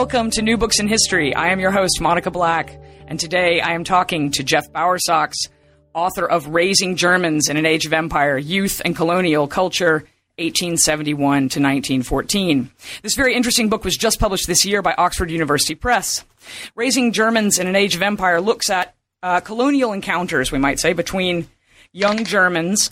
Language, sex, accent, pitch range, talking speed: English, female, American, 155-205 Hz, 175 wpm